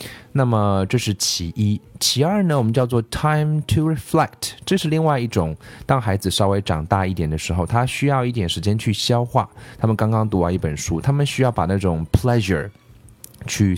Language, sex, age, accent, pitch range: Chinese, male, 20-39, native, 90-120 Hz